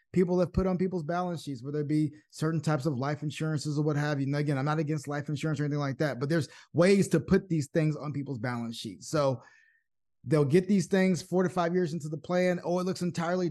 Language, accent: English, American